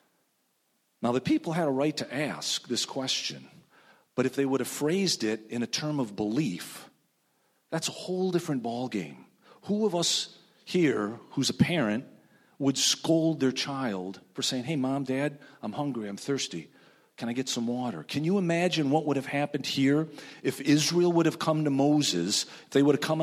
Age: 40-59